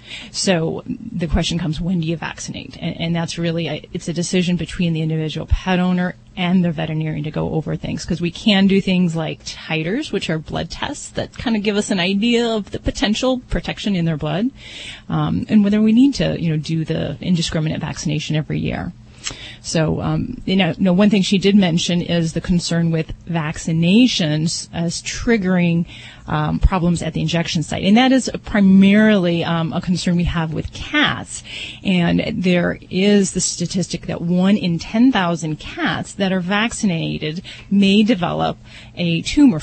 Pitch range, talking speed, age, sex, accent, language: 160-200 Hz, 175 wpm, 30-49, female, American, English